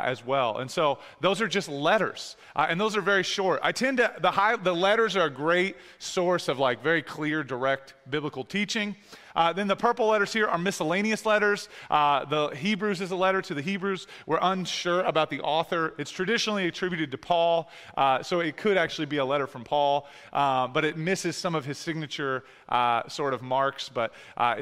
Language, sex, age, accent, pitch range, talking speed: English, male, 30-49, American, 140-190 Hz, 205 wpm